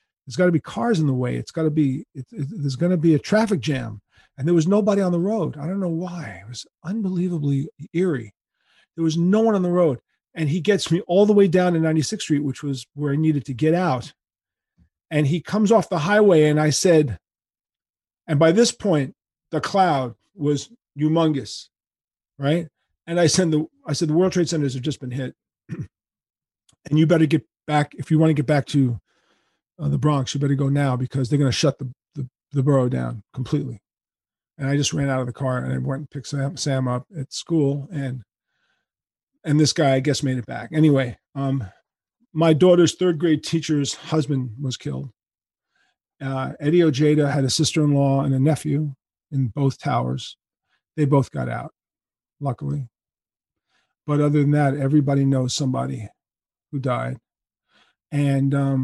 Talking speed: 195 wpm